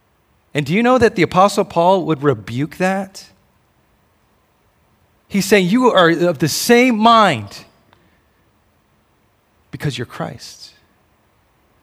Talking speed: 110 wpm